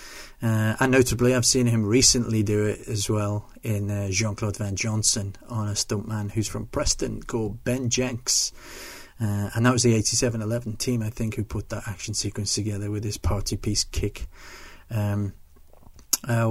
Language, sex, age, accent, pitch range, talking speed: English, male, 30-49, British, 105-120 Hz, 175 wpm